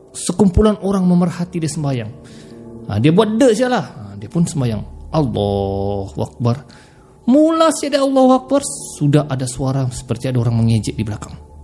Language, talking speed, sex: Malay, 155 wpm, male